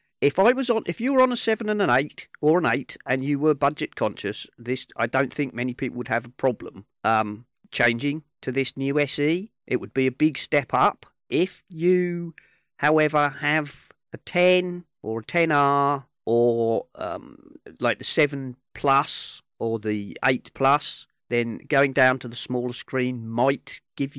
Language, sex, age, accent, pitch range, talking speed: English, male, 40-59, British, 120-150 Hz, 185 wpm